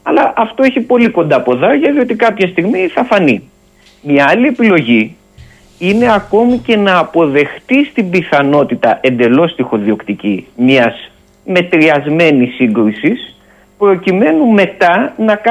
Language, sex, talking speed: Greek, male, 120 wpm